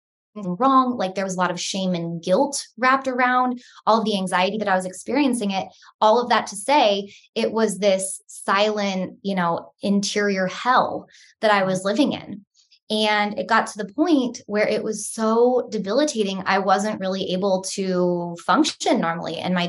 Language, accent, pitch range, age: English, American, 185-225 Hz, 20-39